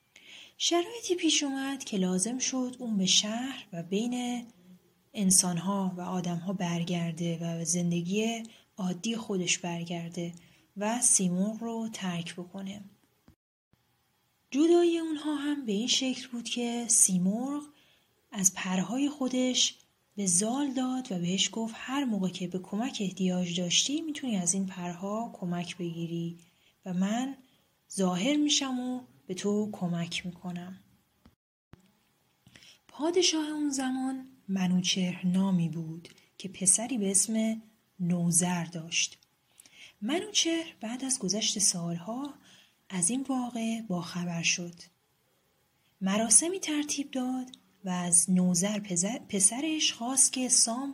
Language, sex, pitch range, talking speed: Persian, female, 180-250 Hz, 115 wpm